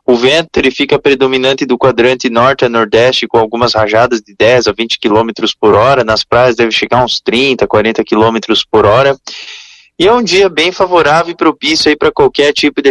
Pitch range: 125-175 Hz